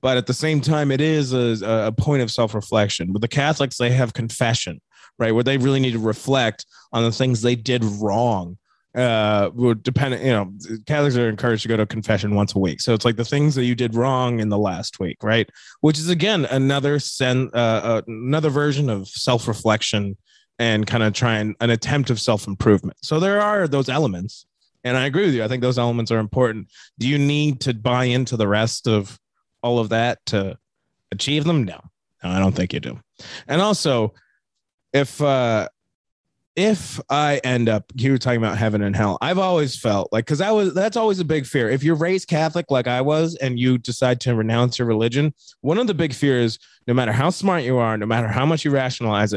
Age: 30-49